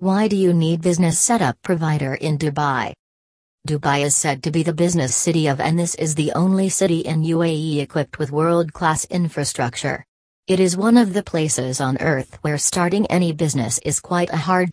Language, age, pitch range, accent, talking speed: English, 40-59, 145-180 Hz, American, 190 wpm